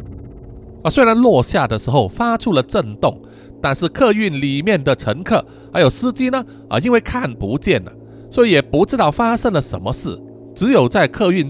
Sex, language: male, Chinese